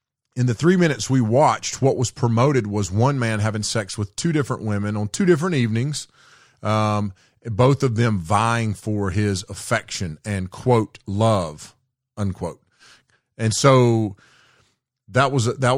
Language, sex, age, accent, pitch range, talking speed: English, male, 40-59, American, 105-125 Hz, 145 wpm